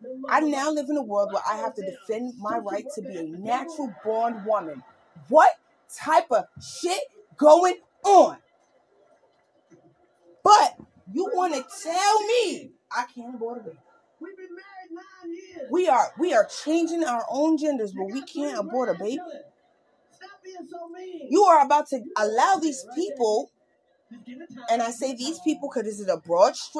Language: English